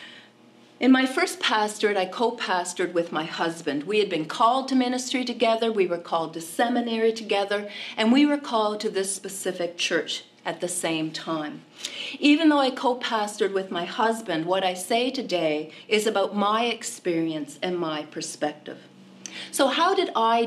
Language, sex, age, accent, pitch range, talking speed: English, female, 40-59, American, 170-230 Hz, 165 wpm